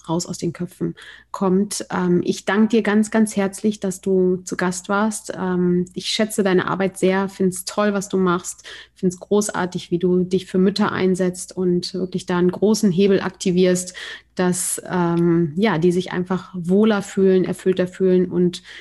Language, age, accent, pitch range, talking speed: German, 30-49, German, 185-215 Hz, 170 wpm